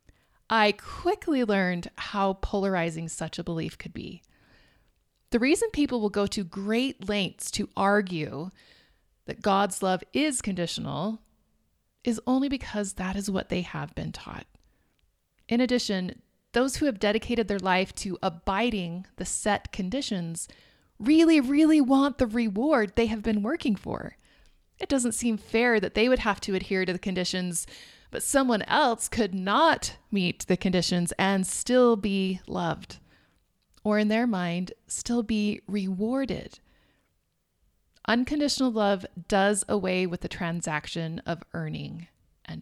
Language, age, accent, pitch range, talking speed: English, 30-49, American, 180-235 Hz, 140 wpm